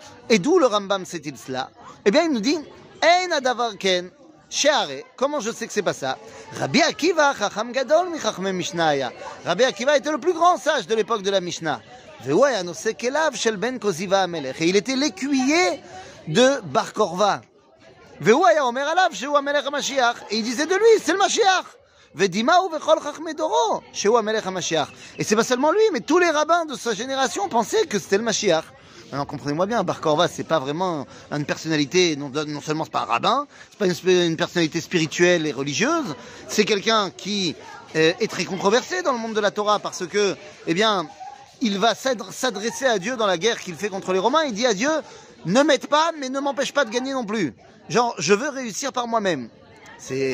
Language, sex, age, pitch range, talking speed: French, male, 30-49, 180-285 Hz, 195 wpm